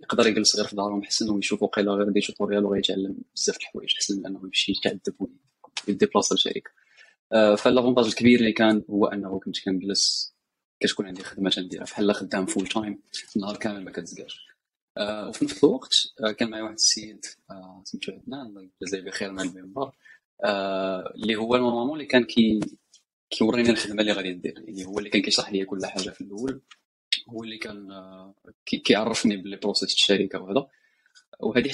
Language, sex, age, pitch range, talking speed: Arabic, male, 20-39, 100-120 Hz, 155 wpm